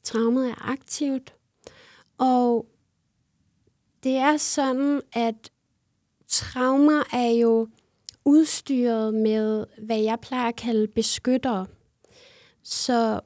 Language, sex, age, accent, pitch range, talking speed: Danish, female, 30-49, native, 230-265 Hz, 90 wpm